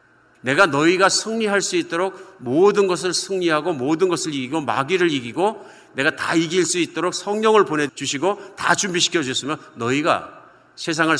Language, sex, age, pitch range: Korean, male, 50-69, 120-170 Hz